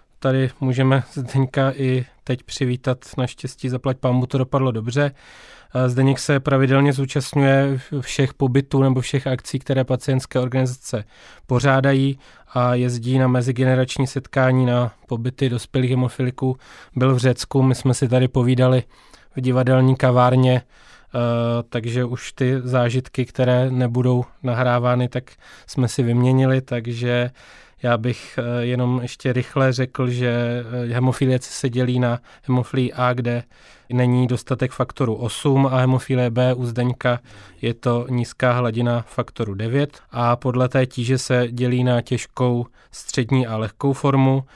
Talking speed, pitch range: 130 wpm, 120-130 Hz